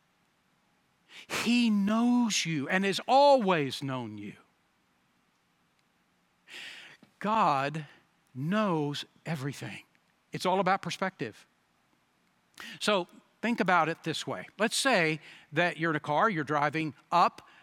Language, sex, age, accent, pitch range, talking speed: English, male, 60-79, American, 170-215 Hz, 105 wpm